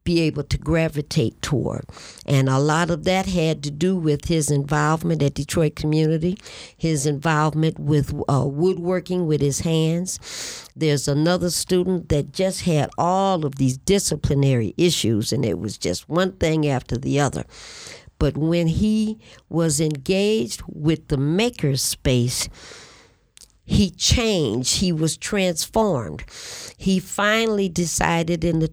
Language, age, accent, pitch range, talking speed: English, 60-79, American, 145-185 Hz, 135 wpm